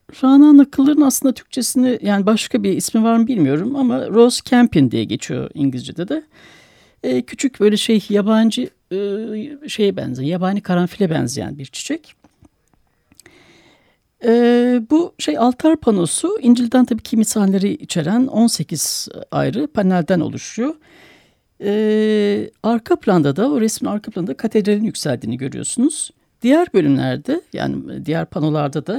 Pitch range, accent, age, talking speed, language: 165-245 Hz, native, 60-79, 130 wpm, Turkish